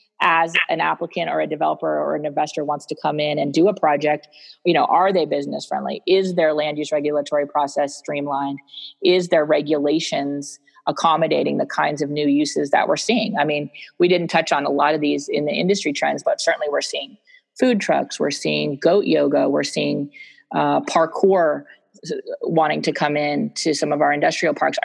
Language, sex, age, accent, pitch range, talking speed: English, female, 30-49, American, 145-180 Hz, 195 wpm